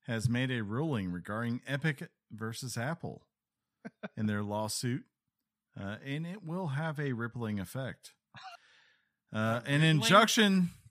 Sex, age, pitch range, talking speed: male, 40-59, 105-145 Hz, 120 wpm